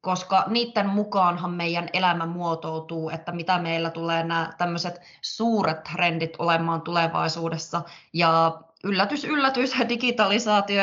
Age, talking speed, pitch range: 20-39, 110 wpm, 165-195 Hz